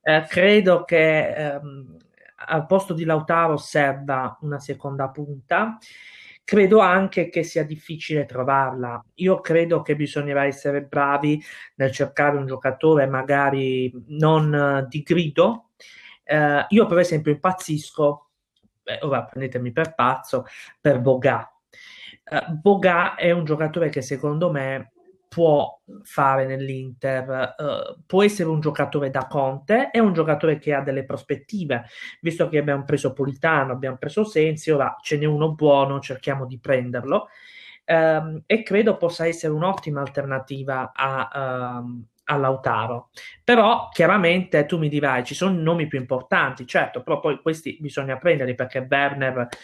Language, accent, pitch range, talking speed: Italian, native, 135-170 Hz, 135 wpm